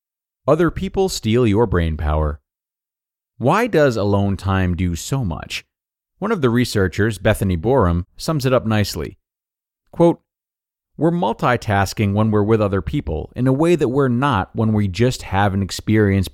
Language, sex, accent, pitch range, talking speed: English, male, American, 95-135 Hz, 160 wpm